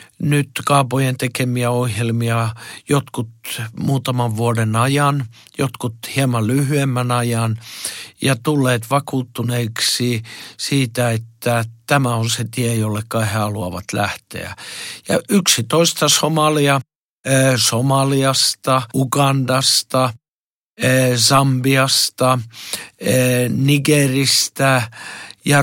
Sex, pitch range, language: male, 115-135 Hz, Finnish